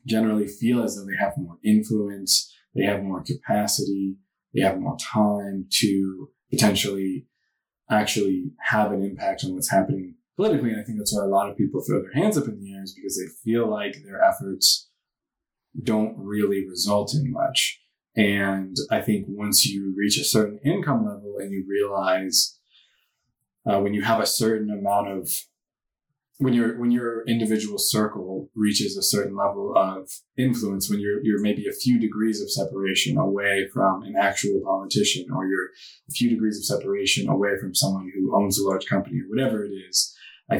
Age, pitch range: 20-39, 100-115 Hz